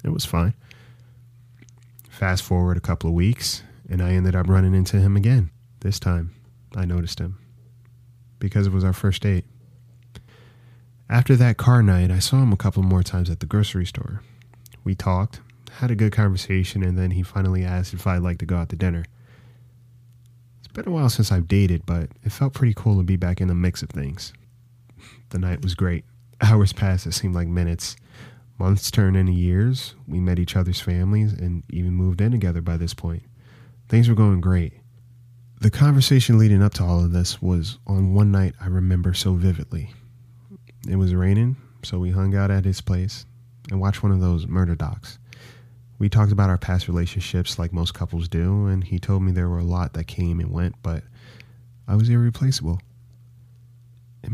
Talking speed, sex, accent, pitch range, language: 190 wpm, male, American, 90-120 Hz, English